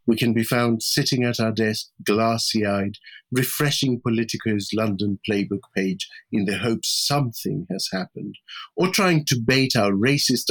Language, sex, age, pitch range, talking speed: English, male, 50-69, 110-150 Hz, 150 wpm